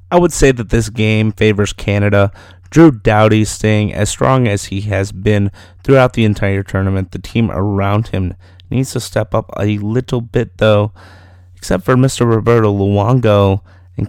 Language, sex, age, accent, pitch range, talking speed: English, male, 30-49, American, 95-115 Hz, 165 wpm